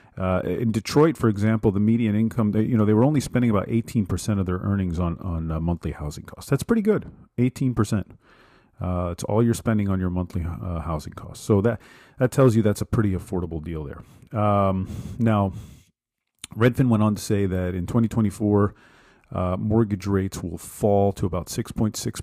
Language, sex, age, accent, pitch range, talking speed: English, male, 40-59, American, 95-115 Hz, 190 wpm